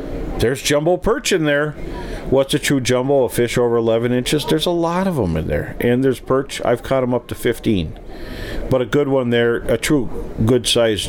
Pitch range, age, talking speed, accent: 90-125 Hz, 50-69, 210 wpm, American